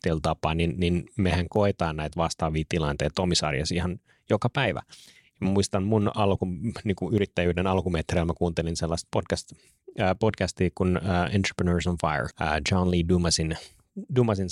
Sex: male